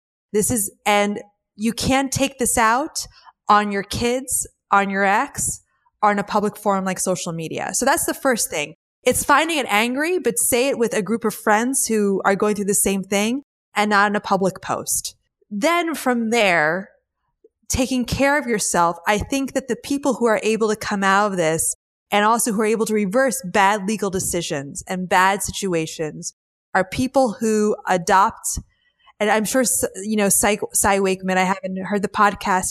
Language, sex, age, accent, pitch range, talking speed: English, female, 20-39, American, 195-240 Hz, 185 wpm